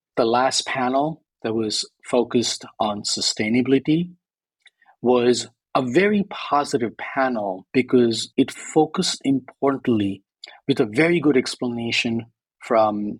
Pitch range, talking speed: 115-155 Hz, 105 wpm